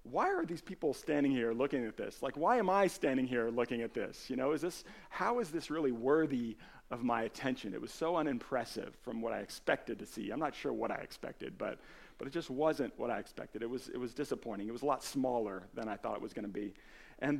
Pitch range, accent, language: 120-160 Hz, American, English